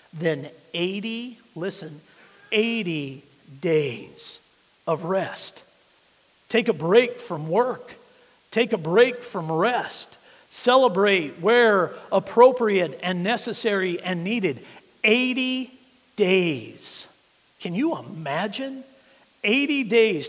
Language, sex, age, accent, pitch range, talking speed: English, male, 50-69, American, 175-235 Hz, 90 wpm